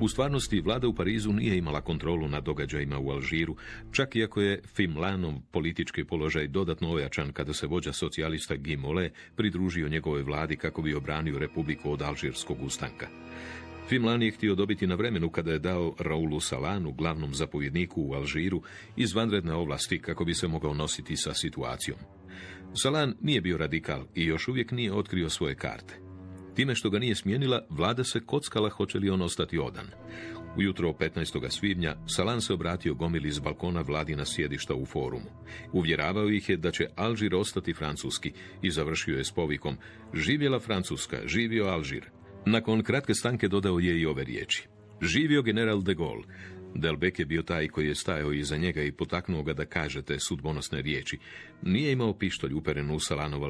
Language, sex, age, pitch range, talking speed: Croatian, male, 40-59, 75-105 Hz, 165 wpm